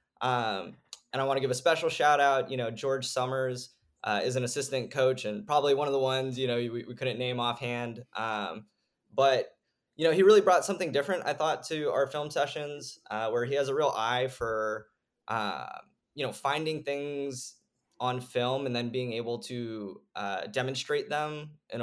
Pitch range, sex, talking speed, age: 115-140 Hz, male, 195 wpm, 10-29